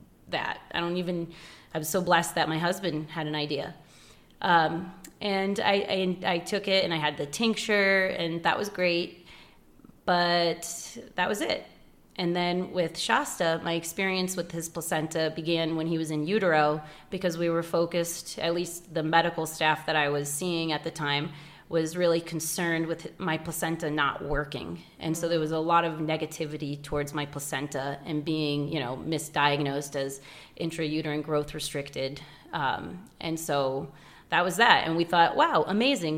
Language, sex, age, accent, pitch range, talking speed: English, female, 30-49, American, 155-175 Hz, 175 wpm